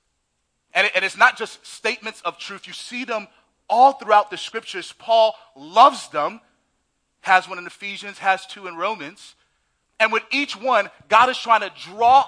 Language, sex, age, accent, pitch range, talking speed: English, male, 30-49, American, 180-245 Hz, 170 wpm